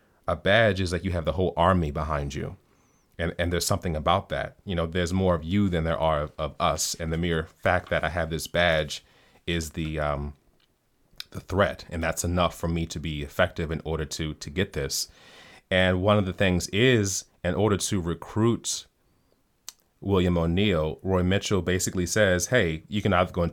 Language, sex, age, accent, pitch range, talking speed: English, male, 30-49, American, 85-105 Hz, 200 wpm